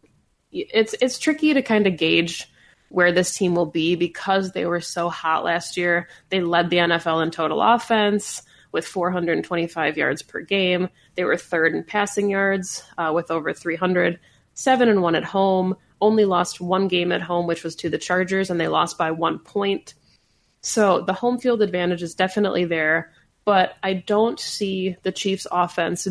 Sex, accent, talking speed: female, American, 180 wpm